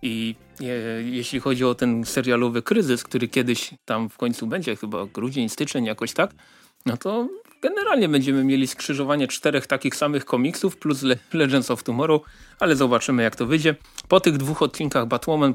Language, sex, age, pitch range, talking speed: Polish, male, 30-49, 120-140 Hz, 160 wpm